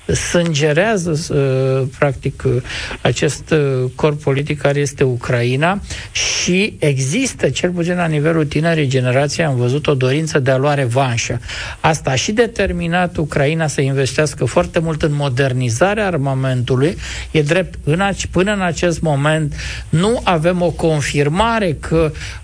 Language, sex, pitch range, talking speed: Romanian, male, 135-175 Hz, 125 wpm